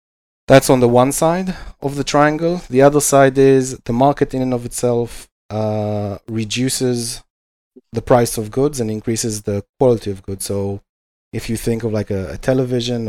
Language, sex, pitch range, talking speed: English, male, 105-130 Hz, 180 wpm